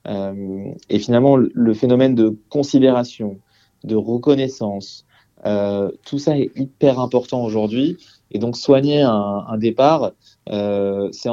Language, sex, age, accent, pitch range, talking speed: French, male, 30-49, French, 110-130 Hz, 130 wpm